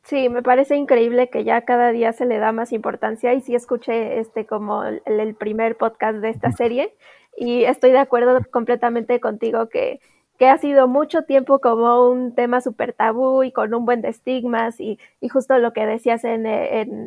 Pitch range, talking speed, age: 225-250 Hz, 195 wpm, 20-39